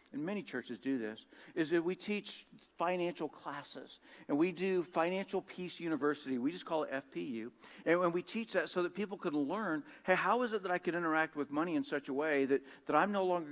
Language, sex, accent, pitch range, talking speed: English, male, American, 135-185 Hz, 225 wpm